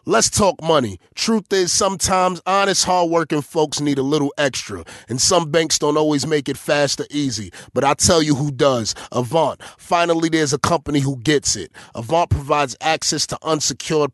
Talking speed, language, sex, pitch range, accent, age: 180 wpm, English, male, 140-170 Hz, American, 30-49